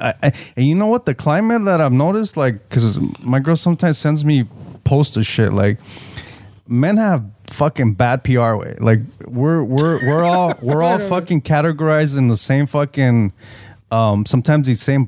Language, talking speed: English, 180 wpm